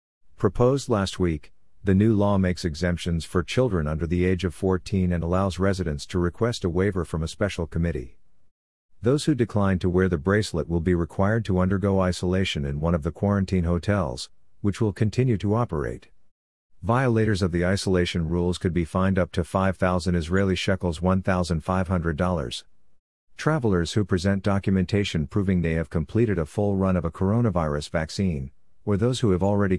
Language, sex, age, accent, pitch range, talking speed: English, male, 50-69, American, 85-100 Hz, 170 wpm